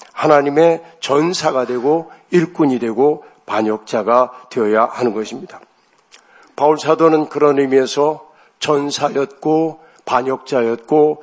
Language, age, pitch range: Korean, 60-79, 135-165 Hz